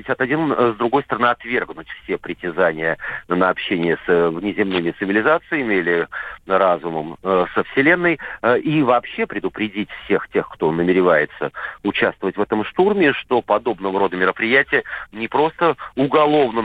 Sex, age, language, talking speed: male, 40-59, Russian, 120 wpm